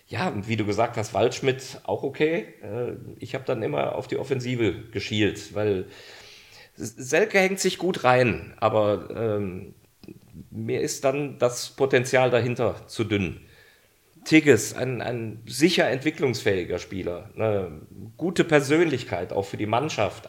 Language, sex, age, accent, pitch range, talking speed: German, male, 40-59, German, 105-135 Hz, 130 wpm